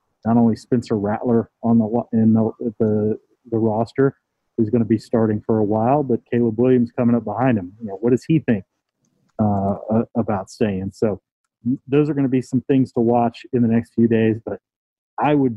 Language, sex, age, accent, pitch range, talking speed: English, male, 40-59, American, 110-130 Hz, 205 wpm